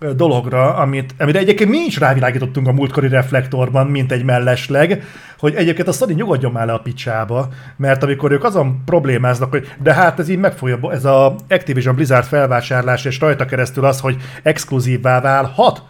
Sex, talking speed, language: male, 165 wpm, Hungarian